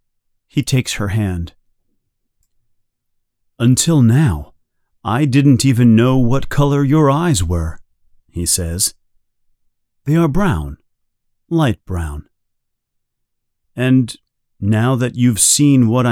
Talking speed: 105 wpm